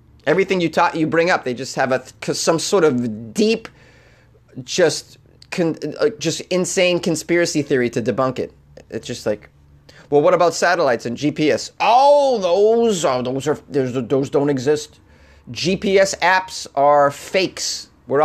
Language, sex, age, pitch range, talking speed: English, male, 30-49, 125-165 Hz, 150 wpm